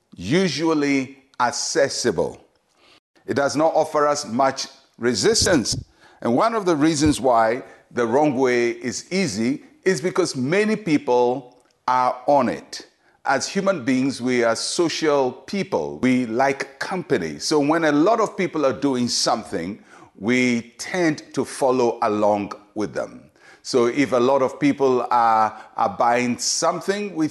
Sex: male